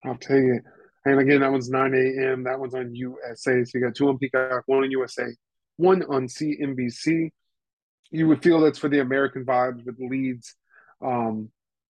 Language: English